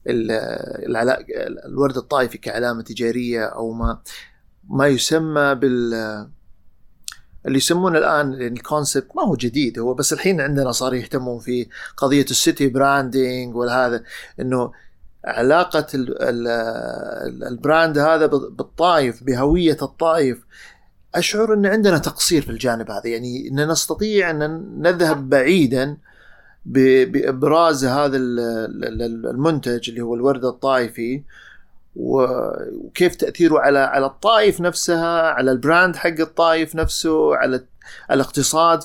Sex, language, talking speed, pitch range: male, Arabic, 110 wpm, 130-170 Hz